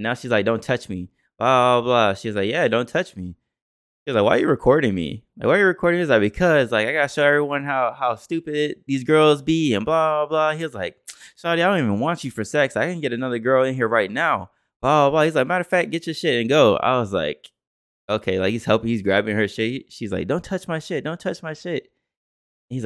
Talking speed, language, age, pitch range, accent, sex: 265 wpm, English, 20-39, 100-150 Hz, American, male